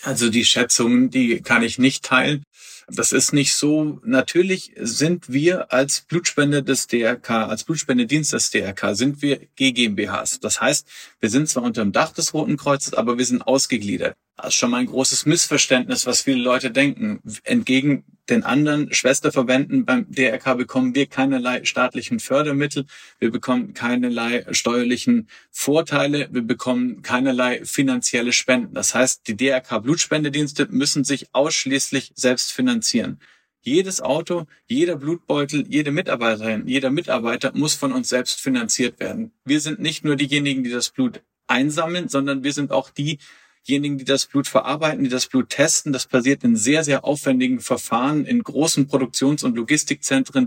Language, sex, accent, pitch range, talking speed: German, male, German, 130-160 Hz, 155 wpm